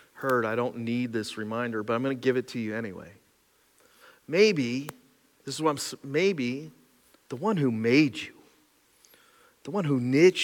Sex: male